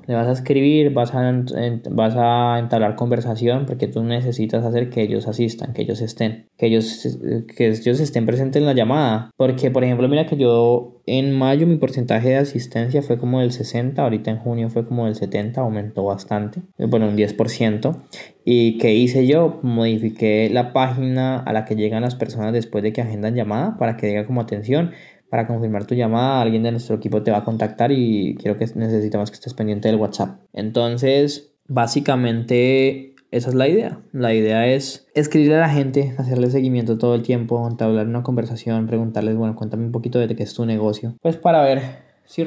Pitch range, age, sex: 110-130 Hz, 20-39, male